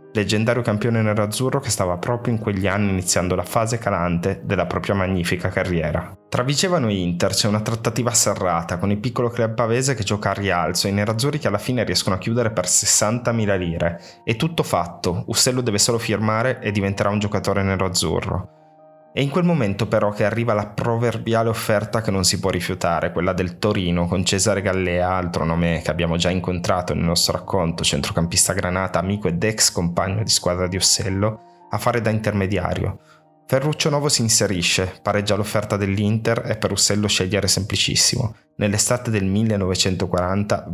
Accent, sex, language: native, male, Italian